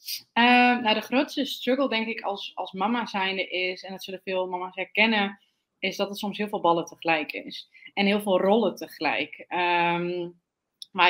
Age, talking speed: 20-39, 185 wpm